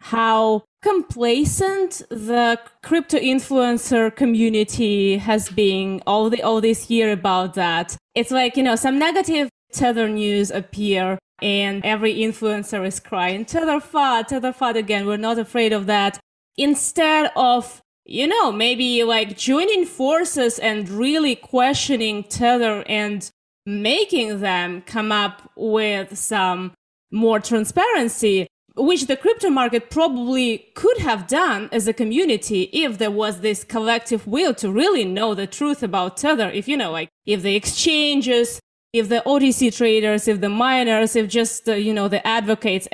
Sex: female